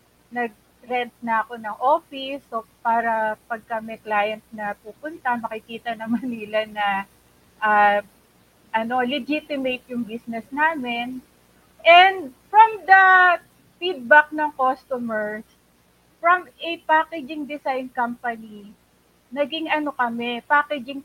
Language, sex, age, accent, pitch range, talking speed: English, female, 30-49, Filipino, 220-280 Hz, 105 wpm